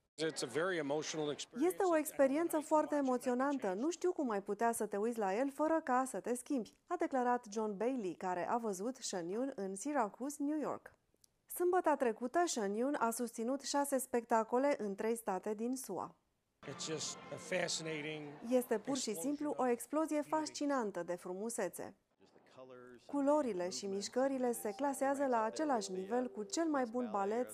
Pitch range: 210-280 Hz